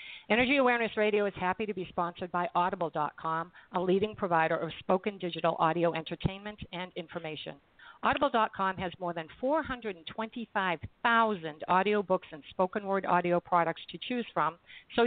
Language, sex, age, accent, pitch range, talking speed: English, female, 50-69, American, 165-210 Hz, 140 wpm